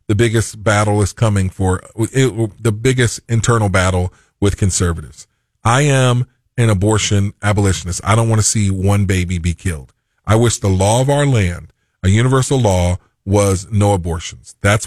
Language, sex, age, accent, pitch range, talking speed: English, male, 40-59, American, 100-115 Hz, 160 wpm